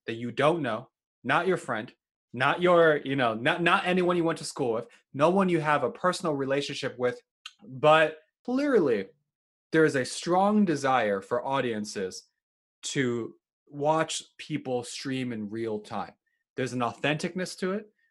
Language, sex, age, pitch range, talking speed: English, male, 20-39, 125-165 Hz, 160 wpm